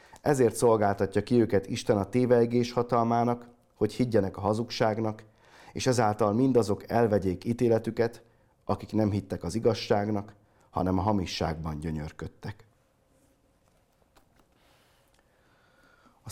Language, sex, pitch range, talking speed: Hungarian, male, 95-115 Hz, 100 wpm